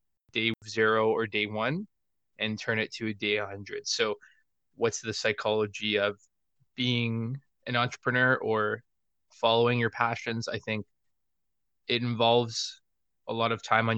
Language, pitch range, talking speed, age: English, 105-120 Hz, 140 wpm, 20-39